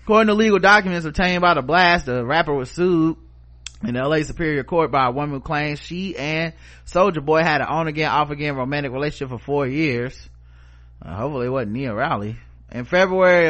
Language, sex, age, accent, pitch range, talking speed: English, male, 30-49, American, 130-155 Hz, 185 wpm